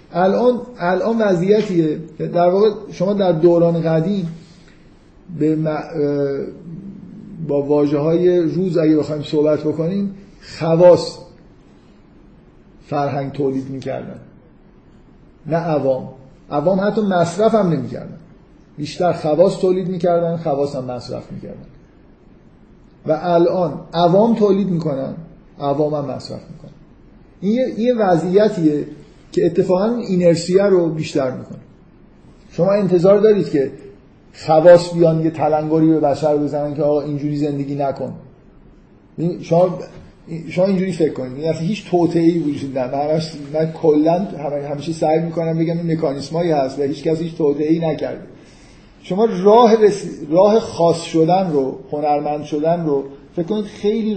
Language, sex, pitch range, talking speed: Persian, male, 150-185 Hz, 115 wpm